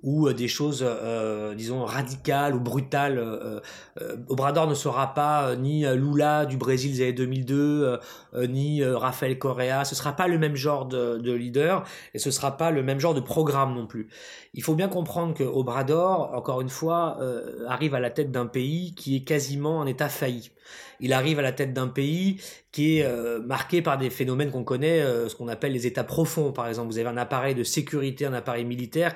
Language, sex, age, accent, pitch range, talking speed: French, male, 30-49, French, 125-155 Hz, 210 wpm